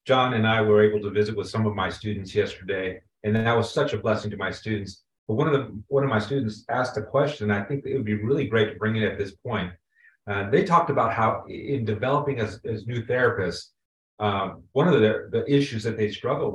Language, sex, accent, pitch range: English, male, American, 105-125 Hz